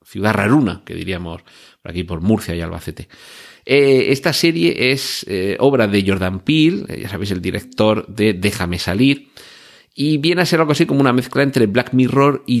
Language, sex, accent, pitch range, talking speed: Spanish, male, Spanish, 95-125 Hz, 190 wpm